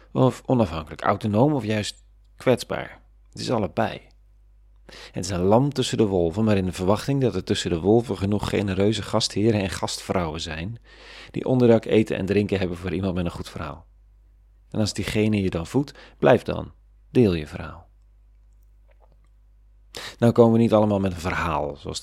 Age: 40-59